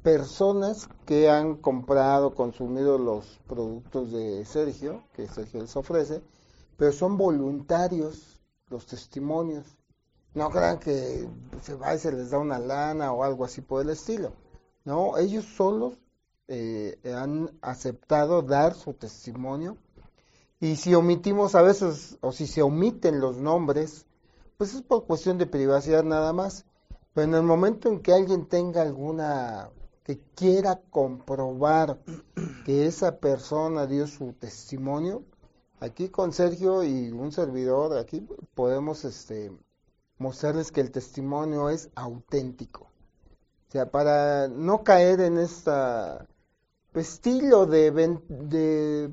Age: 40-59